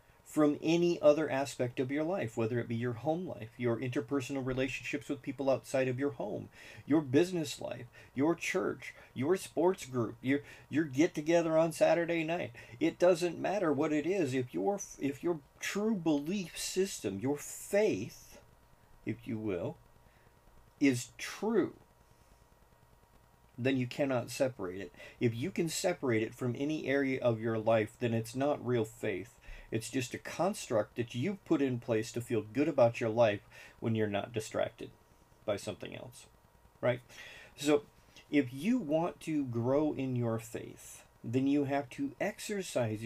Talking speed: 160 wpm